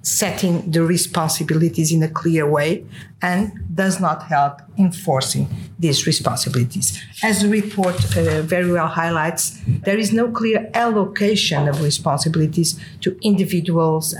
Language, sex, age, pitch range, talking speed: English, female, 50-69, 155-205 Hz, 125 wpm